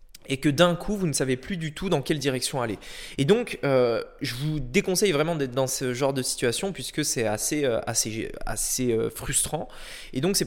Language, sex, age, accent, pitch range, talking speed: French, male, 20-39, French, 130-185 Hz, 205 wpm